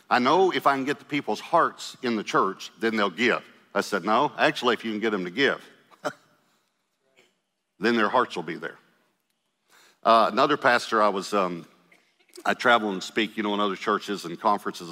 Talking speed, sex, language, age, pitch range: 195 wpm, male, English, 50-69, 100-115 Hz